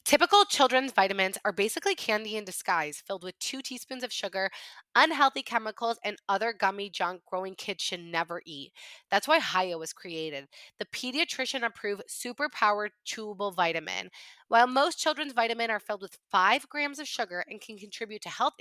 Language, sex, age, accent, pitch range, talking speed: English, female, 20-39, American, 195-250 Hz, 170 wpm